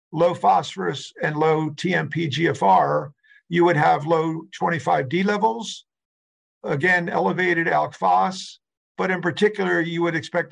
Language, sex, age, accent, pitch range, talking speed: English, male, 50-69, American, 145-180 Hz, 120 wpm